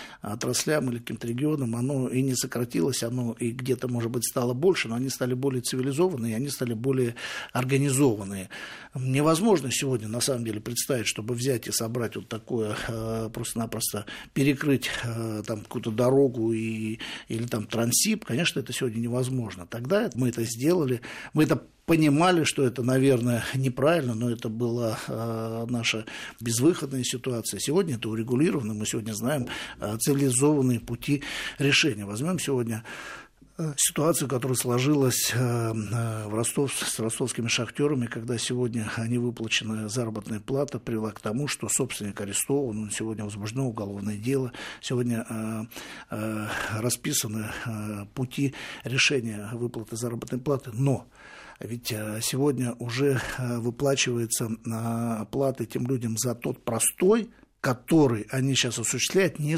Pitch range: 115-135 Hz